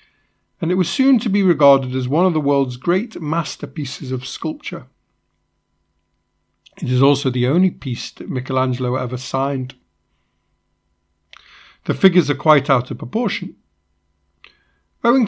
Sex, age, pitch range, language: male, 50-69, 125-180 Hz, English